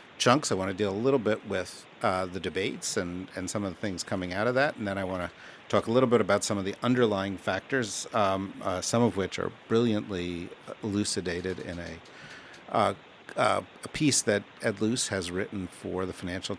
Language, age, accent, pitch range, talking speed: English, 50-69, American, 95-115 Hz, 215 wpm